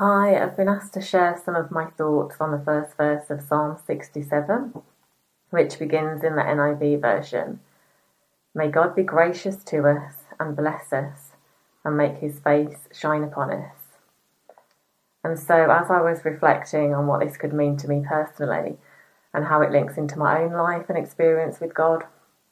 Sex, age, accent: female, 30-49, British